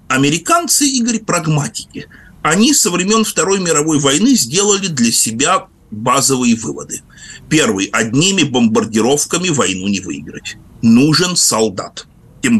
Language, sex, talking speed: Russian, male, 110 wpm